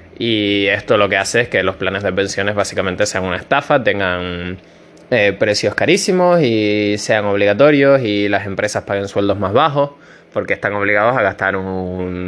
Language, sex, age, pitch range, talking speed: Spanish, male, 20-39, 95-115 Hz, 170 wpm